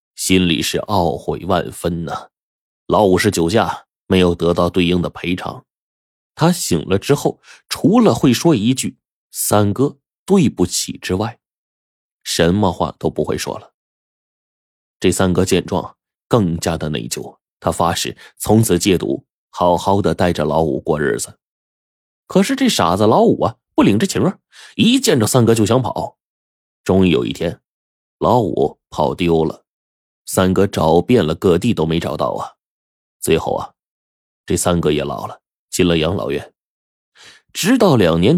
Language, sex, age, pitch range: Chinese, male, 20-39, 85-120 Hz